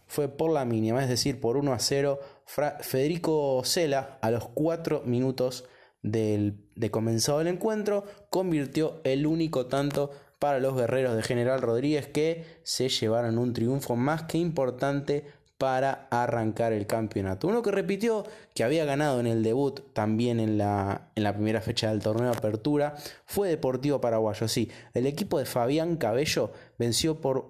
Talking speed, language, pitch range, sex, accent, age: 165 wpm, Spanish, 115-145 Hz, male, Argentinian, 20-39